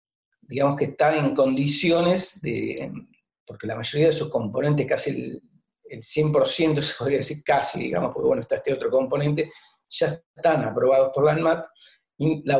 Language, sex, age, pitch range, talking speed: Spanish, male, 50-69, 140-170 Hz, 160 wpm